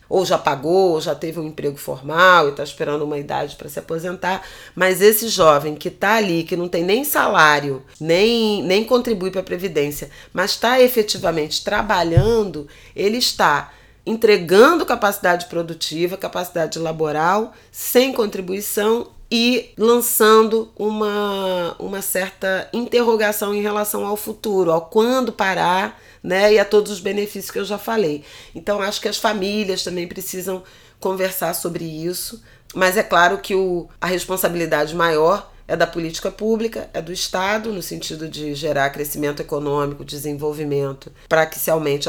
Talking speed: 150 wpm